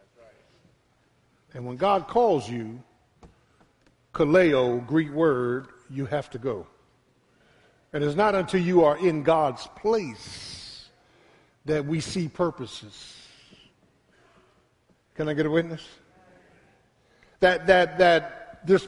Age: 50-69